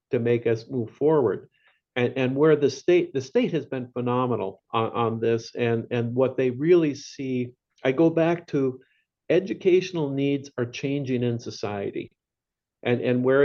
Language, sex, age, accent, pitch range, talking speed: English, male, 50-69, American, 125-150 Hz, 165 wpm